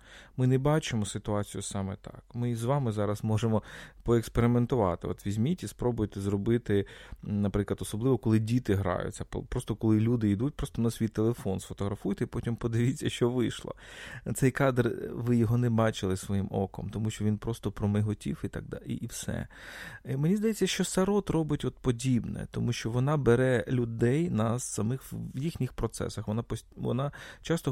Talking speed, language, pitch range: 155 wpm, Ukrainian, 105-130 Hz